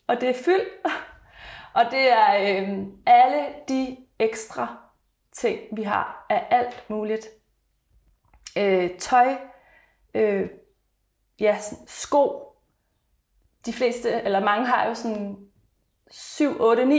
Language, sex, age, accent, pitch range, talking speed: Danish, female, 30-49, native, 210-280 Hz, 105 wpm